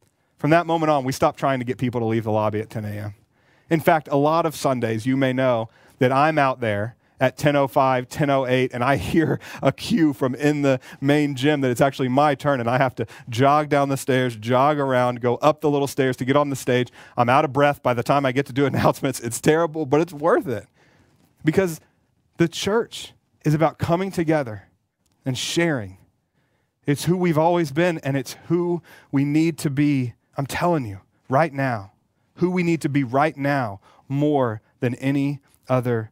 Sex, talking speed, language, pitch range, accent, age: male, 205 wpm, English, 125-150 Hz, American, 40-59